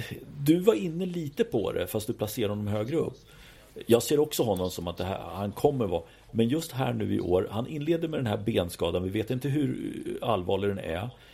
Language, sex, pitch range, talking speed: Swedish, male, 95-125 Hz, 230 wpm